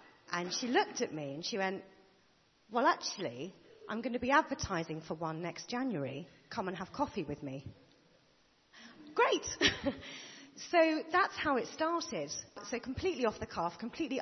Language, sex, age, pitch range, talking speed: English, female, 40-59, 170-235 Hz, 155 wpm